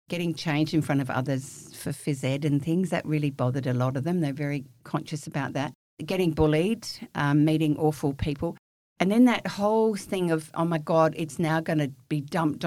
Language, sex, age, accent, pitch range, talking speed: English, female, 50-69, Australian, 135-160 Hz, 210 wpm